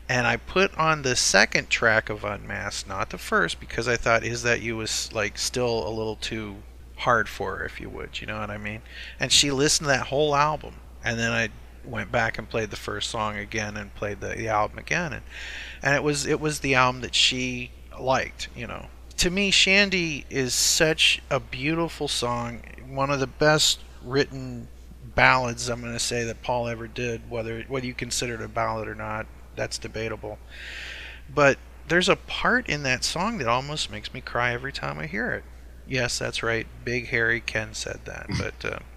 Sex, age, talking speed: male, 30-49, 200 wpm